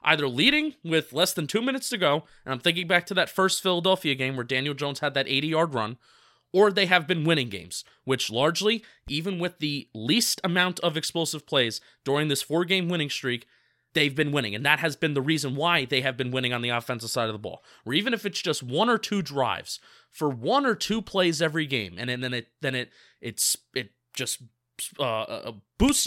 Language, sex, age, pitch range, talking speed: English, male, 20-39, 125-175 Hz, 215 wpm